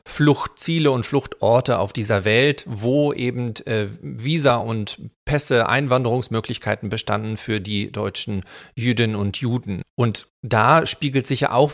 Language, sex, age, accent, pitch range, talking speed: German, male, 40-59, German, 105-125 Hz, 135 wpm